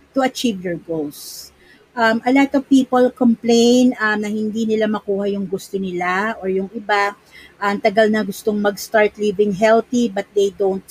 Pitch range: 190-245 Hz